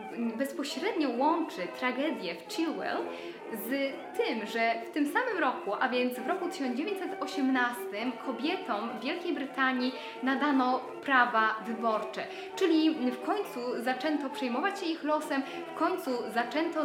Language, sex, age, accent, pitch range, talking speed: Polish, female, 10-29, native, 250-325 Hz, 125 wpm